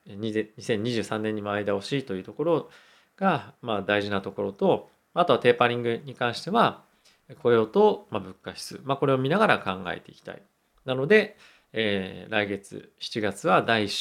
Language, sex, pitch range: Japanese, male, 105-140 Hz